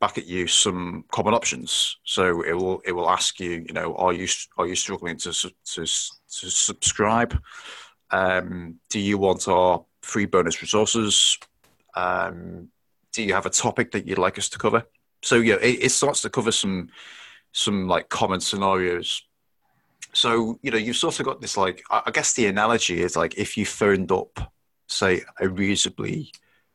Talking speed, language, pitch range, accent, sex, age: 175 wpm, English, 90-110 Hz, British, male, 30-49